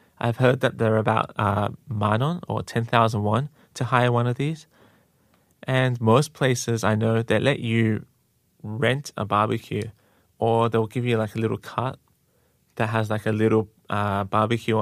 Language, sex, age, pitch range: Korean, male, 20-39, 110-125 Hz